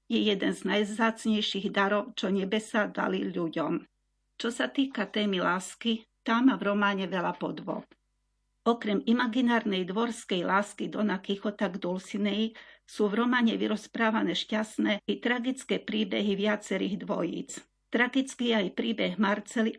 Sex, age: female, 40-59